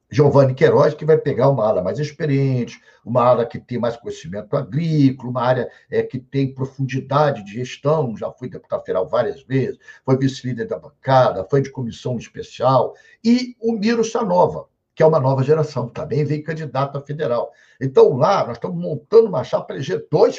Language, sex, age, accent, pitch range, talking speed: Portuguese, male, 60-79, Brazilian, 135-210 Hz, 180 wpm